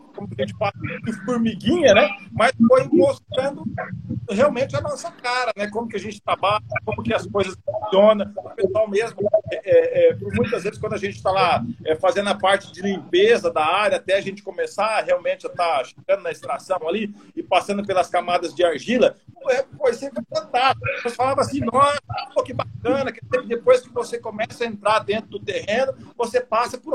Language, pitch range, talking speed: Portuguese, 210-285 Hz, 195 wpm